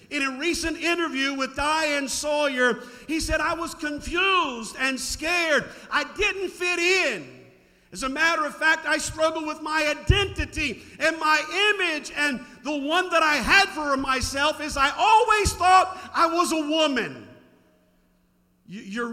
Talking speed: 150 wpm